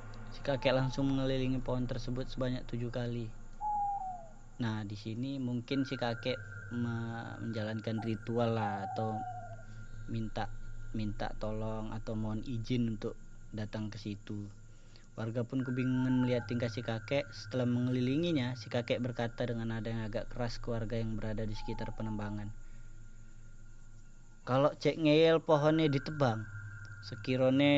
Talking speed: 125 wpm